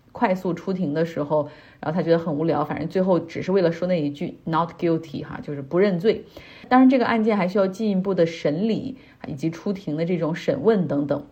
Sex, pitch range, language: female, 165-215 Hz, Chinese